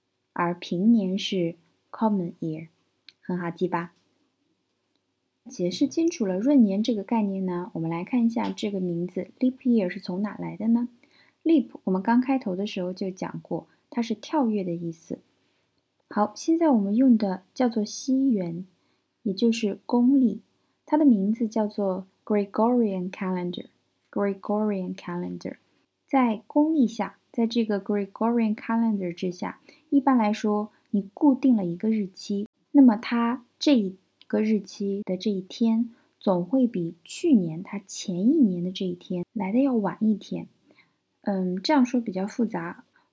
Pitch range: 190-250 Hz